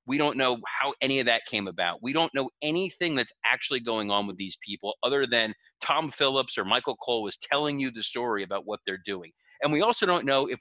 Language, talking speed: English, 240 wpm